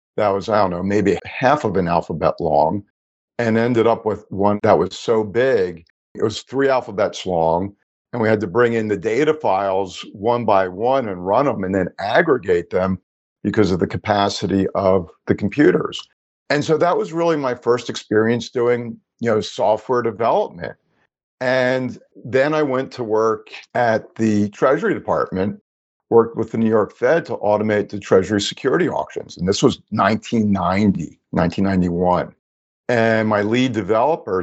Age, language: 50-69, English